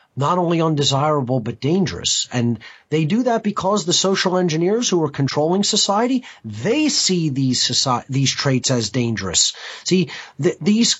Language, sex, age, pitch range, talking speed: English, male, 30-49, 130-190 Hz, 155 wpm